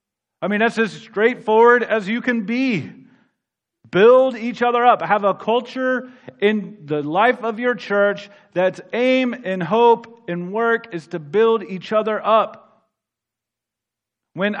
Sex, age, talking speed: male, 40-59, 145 wpm